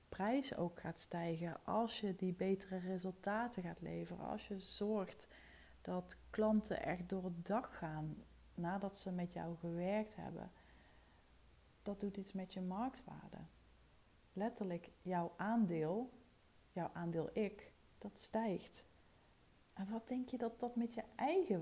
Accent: Dutch